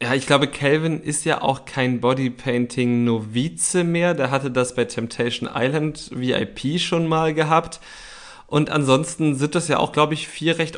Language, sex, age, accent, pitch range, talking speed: German, male, 30-49, German, 125-160 Hz, 165 wpm